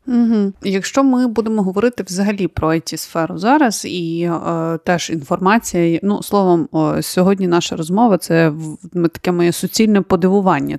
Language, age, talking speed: Ukrainian, 30-49, 150 wpm